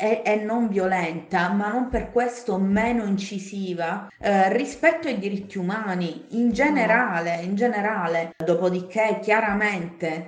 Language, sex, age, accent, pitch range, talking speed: Italian, female, 30-49, native, 165-205 Hz, 110 wpm